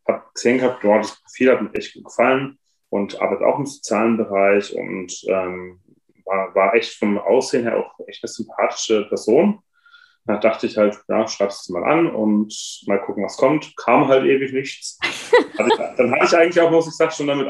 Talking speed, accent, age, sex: 200 wpm, German, 30-49, male